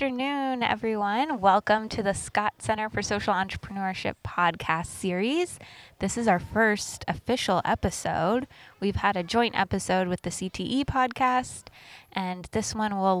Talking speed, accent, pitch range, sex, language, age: 145 wpm, American, 180-215 Hz, female, English, 20-39